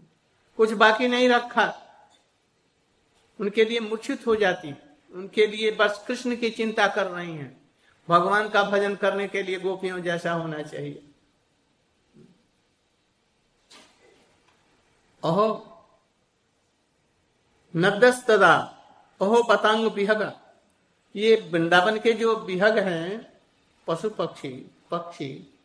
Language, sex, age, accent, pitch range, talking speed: Hindi, male, 60-79, native, 170-220 Hz, 100 wpm